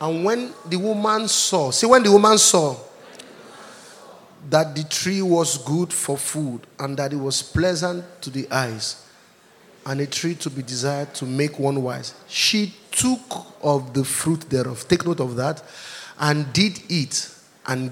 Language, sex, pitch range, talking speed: English, male, 130-175 Hz, 165 wpm